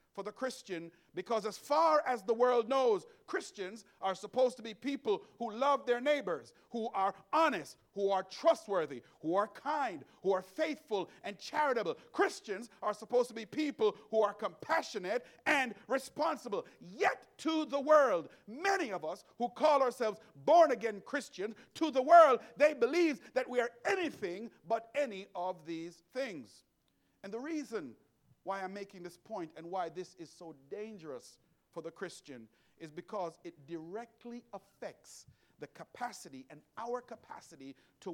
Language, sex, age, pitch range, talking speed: English, male, 50-69, 185-270 Hz, 155 wpm